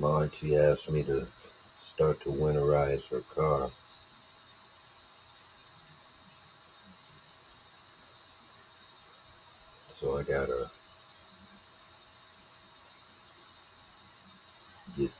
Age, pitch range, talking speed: 60-79, 75-95 Hz, 55 wpm